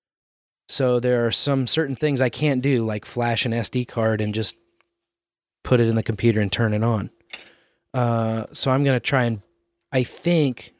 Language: English